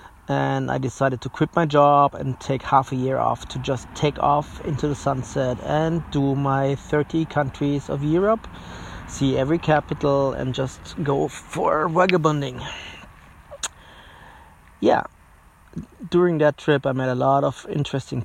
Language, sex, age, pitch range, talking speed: English, male, 30-49, 130-145 Hz, 150 wpm